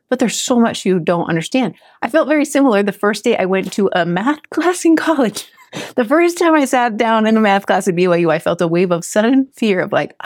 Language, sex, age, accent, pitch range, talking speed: English, female, 30-49, American, 170-230 Hz, 250 wpm